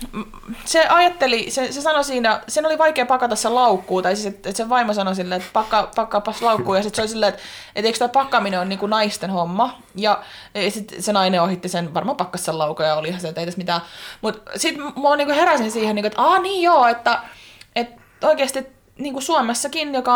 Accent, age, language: native, 20-39, Finnish